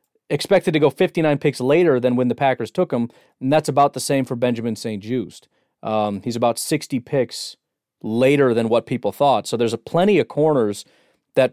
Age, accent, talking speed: 30-49, American, 195 wpm